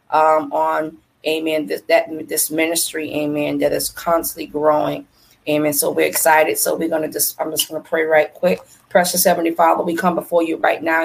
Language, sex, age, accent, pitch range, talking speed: English, female, 30-49, American, 160-175 Hz, 200 wpm